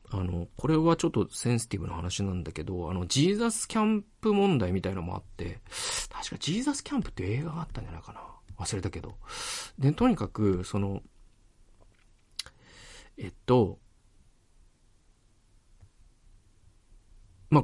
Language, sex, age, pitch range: Japanese, male, 40-59, 95-140 Hz